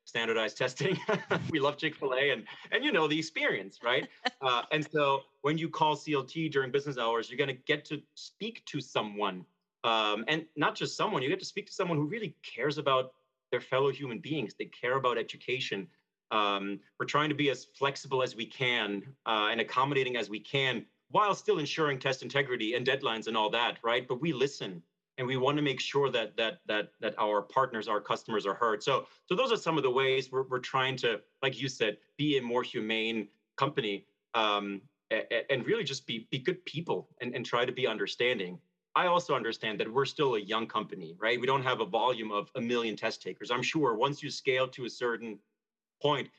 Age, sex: 30-49, male